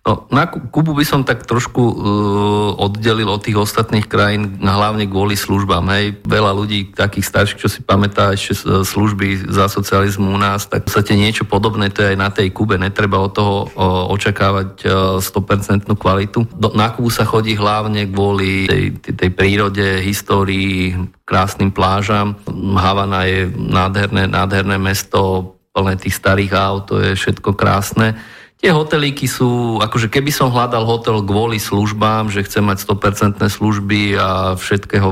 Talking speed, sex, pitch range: 145 wpm, male, 95-110 Hz